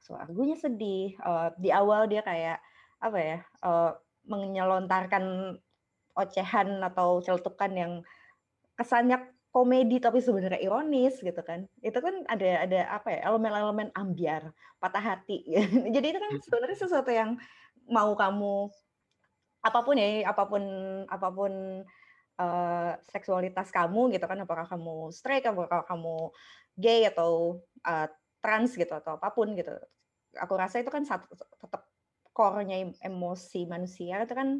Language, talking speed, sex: Indonesian, 130 wpm, female